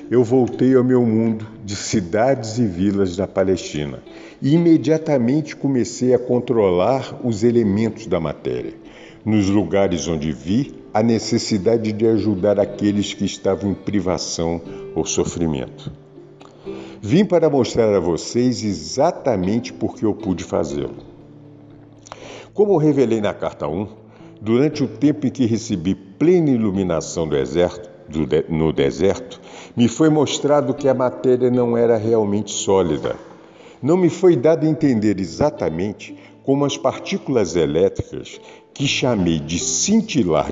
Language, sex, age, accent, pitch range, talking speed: Portuguese, male, 50-69, Brazilian, 100-130 Hz, 125 wpm